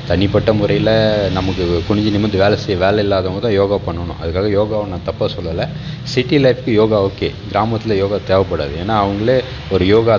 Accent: native